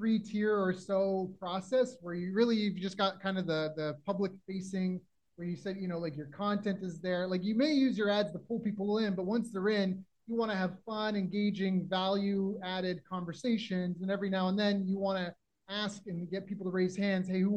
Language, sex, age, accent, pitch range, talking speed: English, male, 30-49, American, 180-210 Hz, 230 wpm